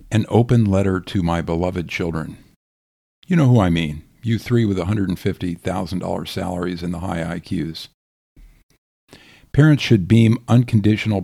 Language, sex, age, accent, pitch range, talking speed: English, male, 50-69, American, 85-115 Hz, 135 wpm